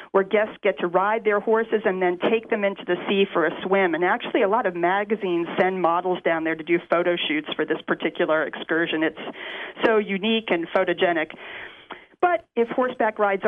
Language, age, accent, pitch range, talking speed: English, 40-59, American, 175-210 Hz, 195 wpm